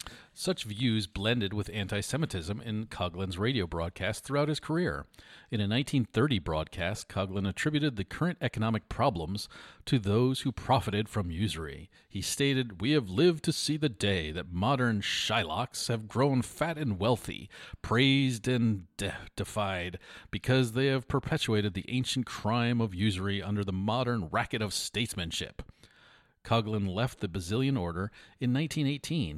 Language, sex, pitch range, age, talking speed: English, male, 95-130 Hz, 40-59, 145 wpm